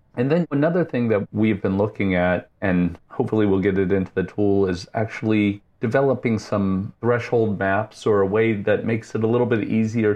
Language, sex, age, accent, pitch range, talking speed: English, male, 40-59, American, 95-120 Hz, 195 wpm